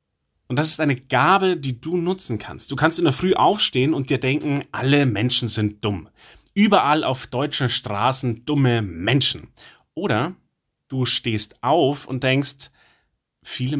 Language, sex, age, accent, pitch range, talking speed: German, male, 30-49, German, 105-140 Hz, 150 wpm